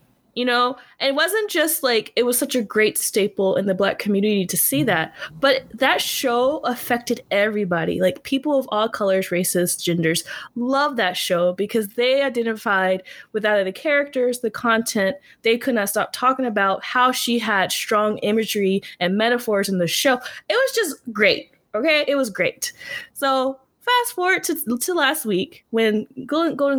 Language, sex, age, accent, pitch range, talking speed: English, female, 20-39, American, 200-280 Hz, 170 wpm